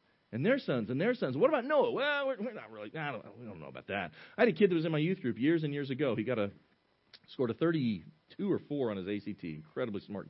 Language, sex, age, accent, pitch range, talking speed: English, male, 40-59, American, 110-160 Hz, 280 wpm